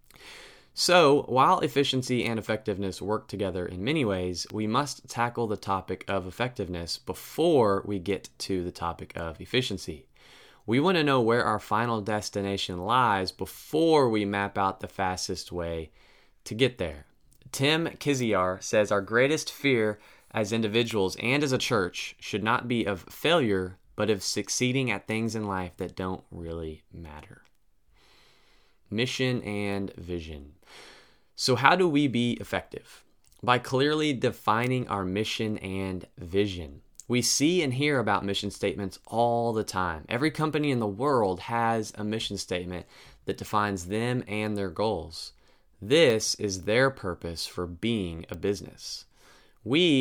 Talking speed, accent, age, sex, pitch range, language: 145 wpm, American, 20-39, male, 95-120 Hz, English